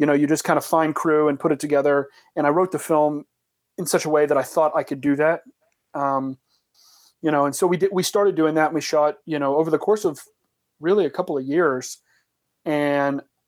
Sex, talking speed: male, 240 wpm